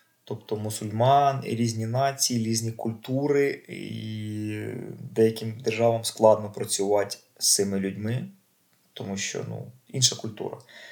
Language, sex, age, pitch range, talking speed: Ukrainian, male, 20-39, 110-130 Hz, 115 wpm